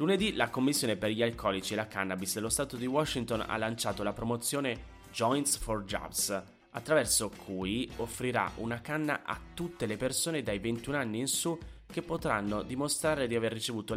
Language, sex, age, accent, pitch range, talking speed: Italian, male, 30-49, native, 95-130 Hz, 170 wpm